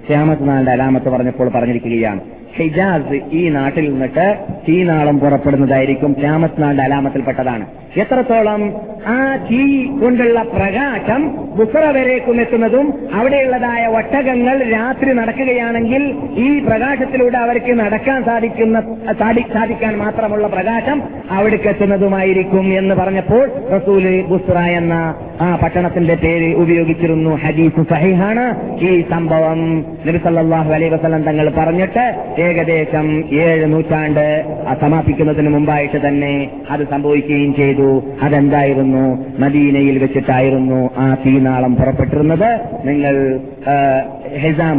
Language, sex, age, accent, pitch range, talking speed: Malayalam, male, 30-49, native, 140-205 Hz, 90 wpm